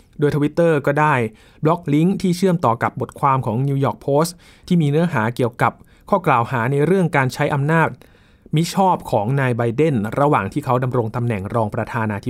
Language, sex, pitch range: Thai, male, 115-150 Hz